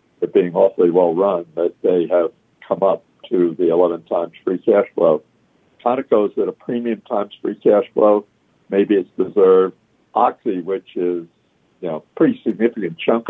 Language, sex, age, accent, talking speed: English, male, 60-79, American, 165 wpm